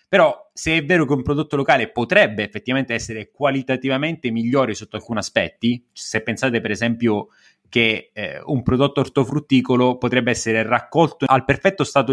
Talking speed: 155 wpm